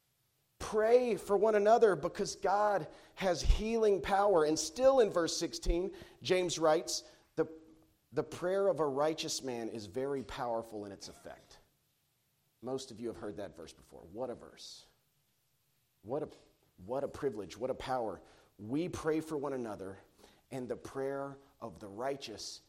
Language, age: English, 40-59